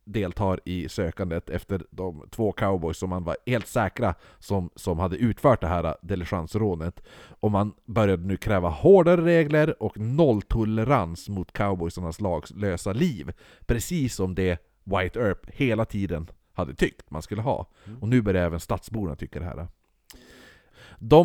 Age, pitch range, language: 30-49, 90-115 Hz, Swedish